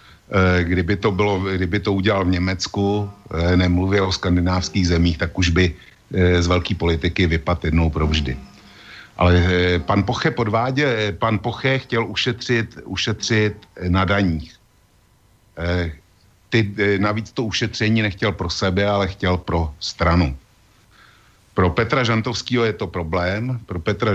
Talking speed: 125 wpm